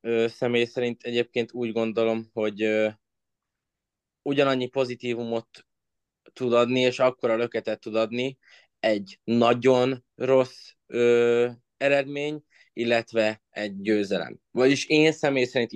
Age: 20-39